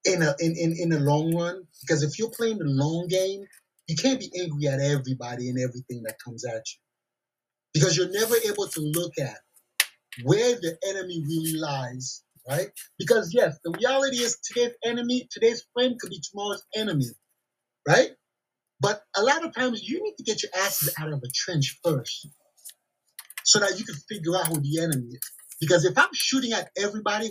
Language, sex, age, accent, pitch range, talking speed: English, male, 30-49, American, 150-235 Hz, 190 wpm